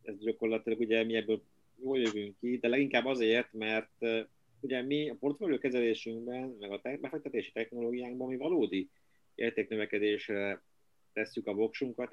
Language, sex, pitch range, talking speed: Hungarian, male, 105-125 Hz, 140 wpm